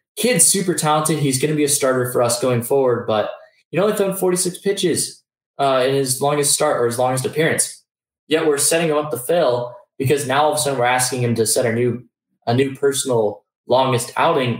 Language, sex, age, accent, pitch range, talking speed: English, male, 10-29, American, 120-160 Hz, 220 wpm